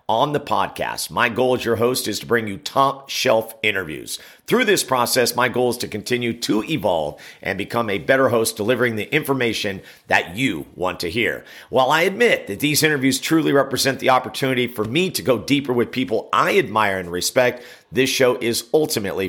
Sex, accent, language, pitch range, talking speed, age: male, American, English, 110-140 Hz, 195 wpm, 50-69